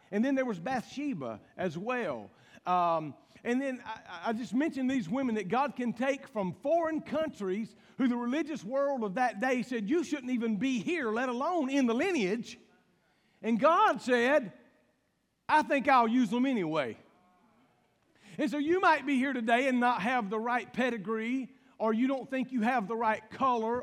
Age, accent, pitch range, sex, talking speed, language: 50-69, American, 225-285 Hz, male, 180 wpm, English